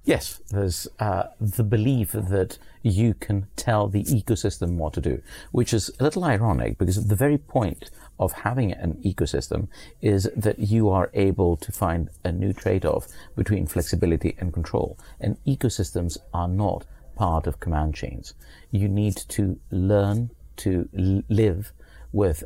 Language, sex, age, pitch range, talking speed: English, male, 50-69, 85-110 Hz, 150 wpm